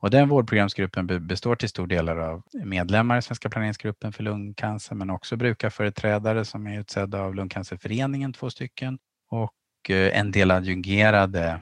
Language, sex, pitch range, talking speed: Swedish, male, 85-105 Hz, 150 wpm